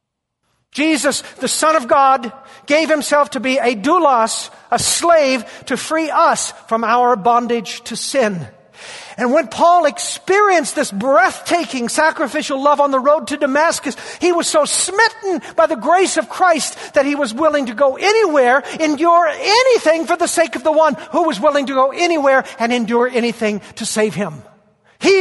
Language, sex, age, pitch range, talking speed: English, male, 50-69, 235-310 Hz, 170 wpm